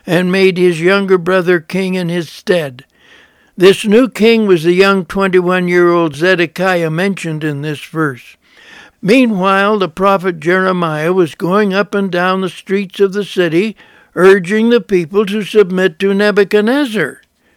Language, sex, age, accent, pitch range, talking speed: English, male, 60-79, American, 170-200 Hz, 145 wpm